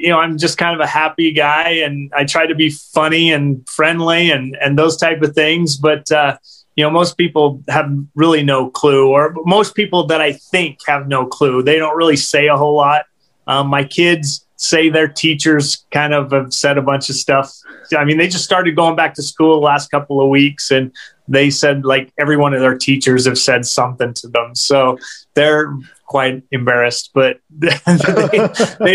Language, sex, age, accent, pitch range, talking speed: Hindi, male, 30-49, American, 140-170 Hz, 195 wpm